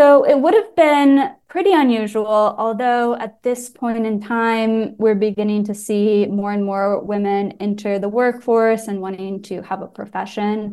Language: English